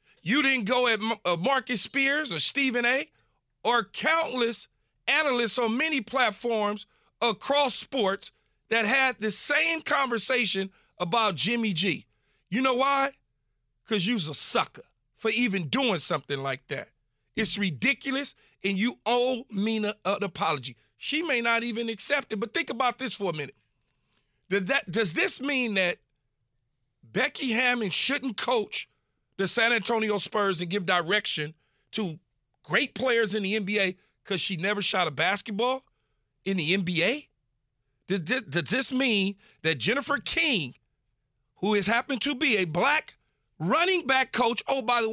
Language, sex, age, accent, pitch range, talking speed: English, male, 40-59, American, 175-250 Hz, 145 wpm